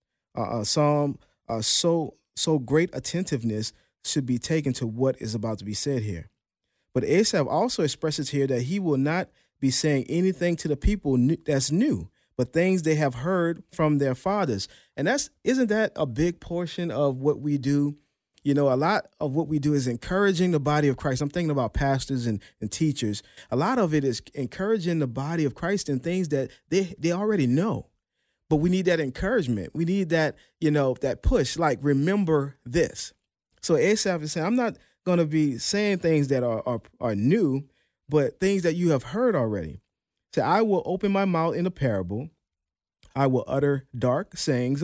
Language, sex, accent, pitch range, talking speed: English, male, American, 130-175 Hz, 195 wpm